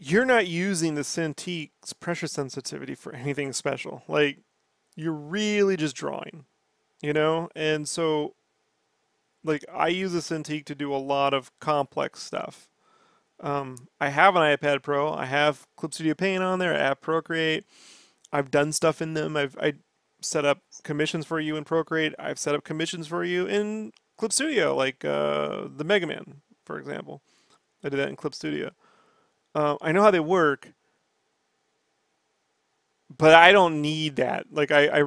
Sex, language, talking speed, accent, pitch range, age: male, English, 165 wpm, American, 145-170 Hz, 30-49